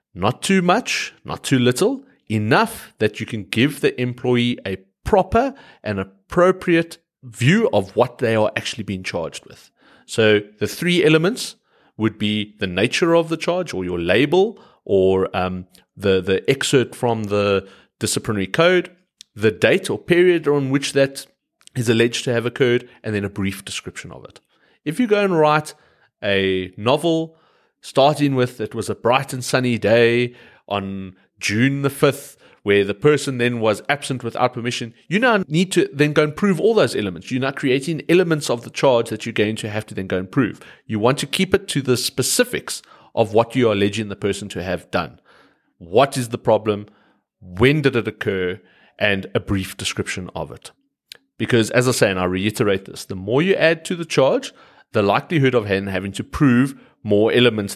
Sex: male